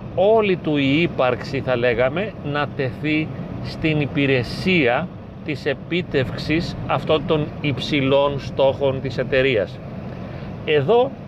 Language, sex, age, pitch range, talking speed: Greek, male, 40-59, 130-155 Hz, 100 wpm